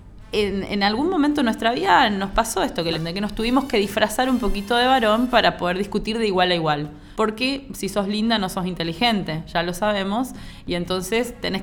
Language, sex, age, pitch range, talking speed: Spanish, female, 20-39, 170-220 Hz, 200 wpm